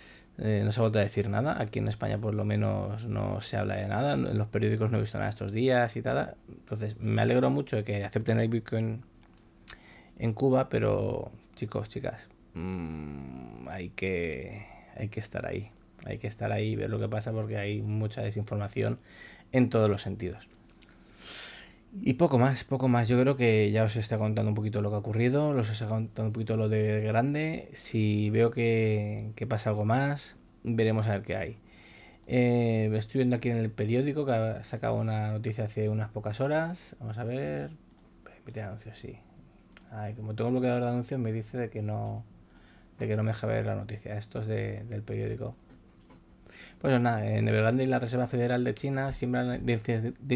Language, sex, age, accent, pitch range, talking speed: Spanish, male, 20-39, Spanish, 105-120 Hz, 195 wpm